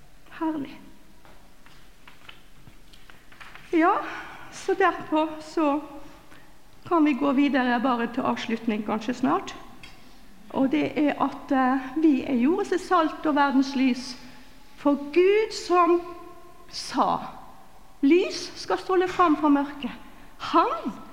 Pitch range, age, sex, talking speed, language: 220-335 Hz, 50-69, female, 95 wpm, English